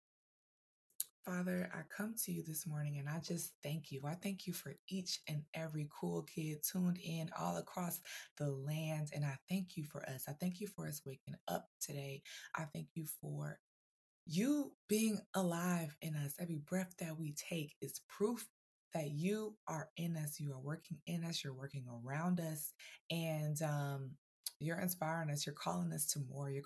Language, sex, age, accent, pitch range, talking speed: English, female, 20-39, American, 150-185 Hz, 185 wpm